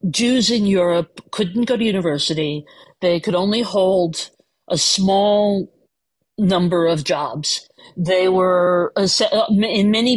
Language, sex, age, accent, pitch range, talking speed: English, female, 50-69, American, 170-210 Hz, 120 wpm